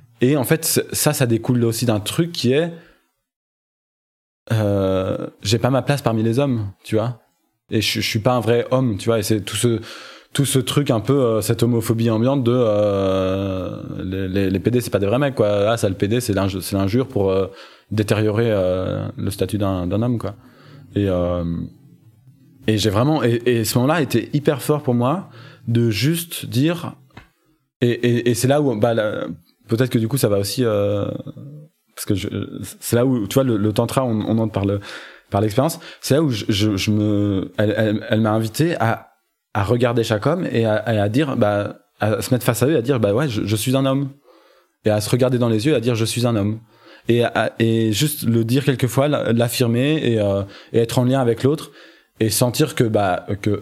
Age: 20-39